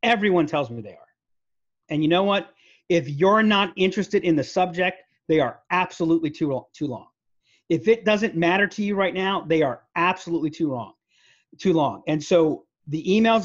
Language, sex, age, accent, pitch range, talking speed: English, male, 40-59, American, 150-200 Hz, 185 wpm